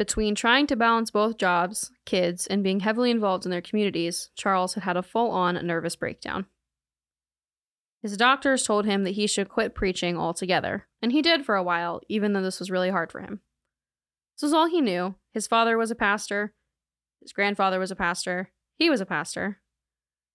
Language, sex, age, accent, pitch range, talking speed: English, female, 10-29, American, 180-225 Hz, 190 wpm